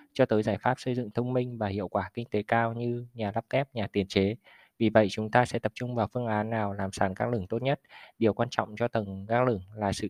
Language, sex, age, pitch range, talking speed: Vietnamese, male, 20-39, 105-120 Hz, 280 wpm